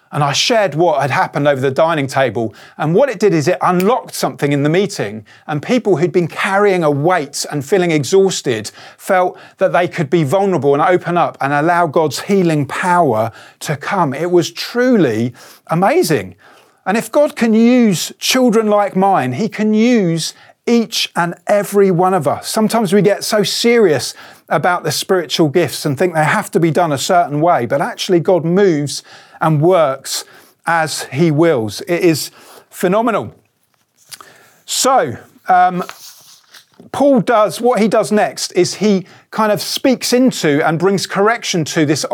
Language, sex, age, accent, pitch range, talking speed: English, male, 40-59, British, 155-200 Hz, 170 wpm